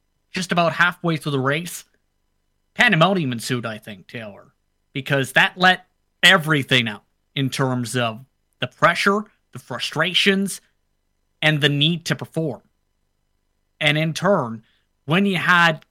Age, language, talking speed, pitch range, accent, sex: 30-49, English, 130 wpm, 125-170 Hz, American, male